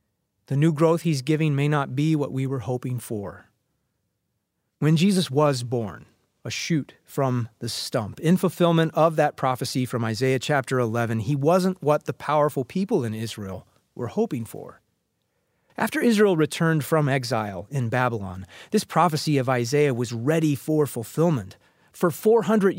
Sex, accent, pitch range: male, American, 130-165 Hz